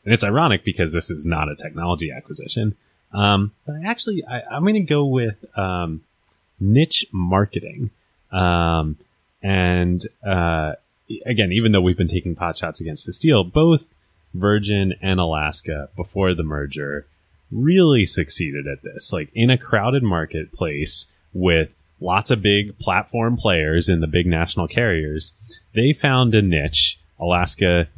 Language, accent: English, American